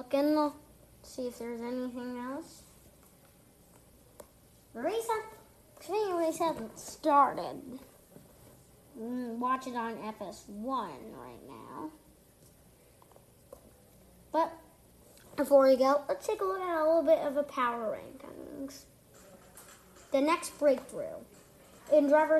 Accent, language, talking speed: American, English, 105 wpm